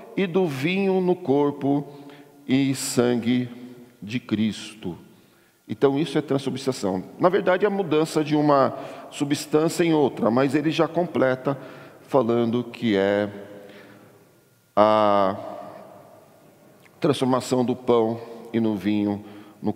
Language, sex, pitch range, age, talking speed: Portuguese, male, 110-145 Hz, 50-69, 115 wpm